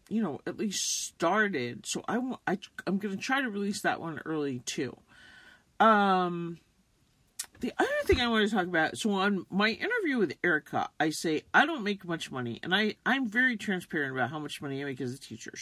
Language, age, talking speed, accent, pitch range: English, 50-69, 205 wpm, American, 160-230 Hz